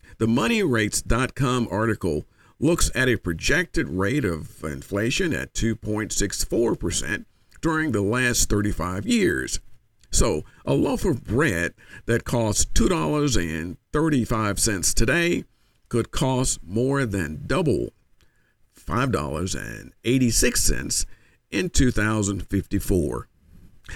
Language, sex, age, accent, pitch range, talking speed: English, male, 50-69, American, 100-140 Hz, 85 wpm